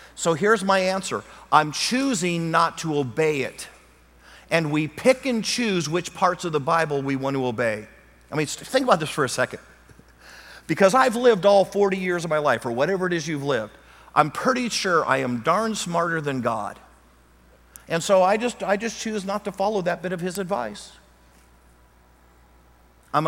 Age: 50-69